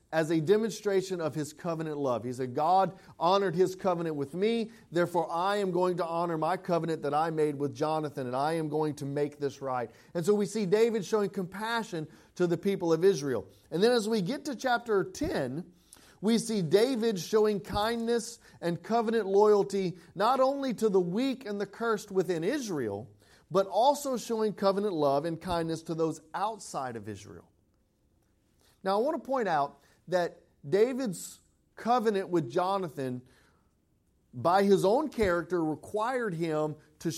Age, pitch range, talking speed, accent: 40-59, 150-205 Hz, 170 wpm, American